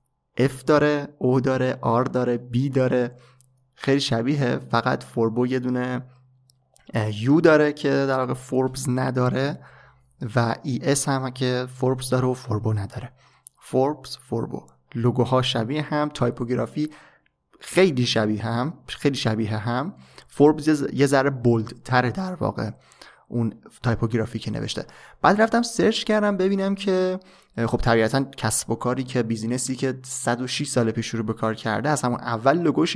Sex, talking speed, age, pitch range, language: male, 140 wpm, 30-49, 115-140 Hz, Persian